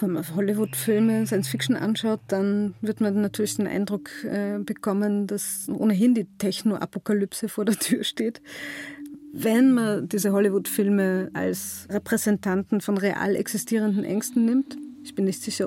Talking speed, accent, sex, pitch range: 135 wpm, German, female, 200-225 Hz